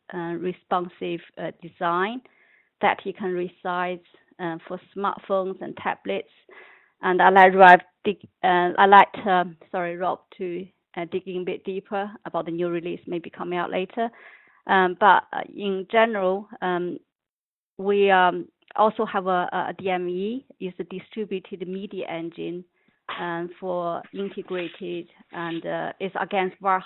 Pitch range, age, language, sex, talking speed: 175-195 Hz, 30-49, English, female, 145 wpm